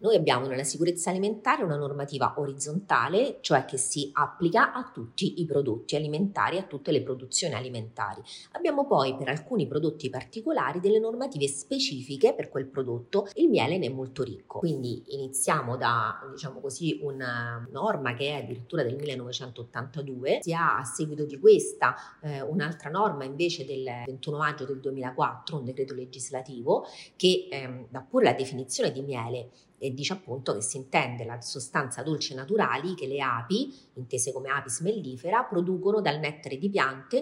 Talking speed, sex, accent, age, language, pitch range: 160 wpm, female, native, 30-49, Italian, 130-180 Hz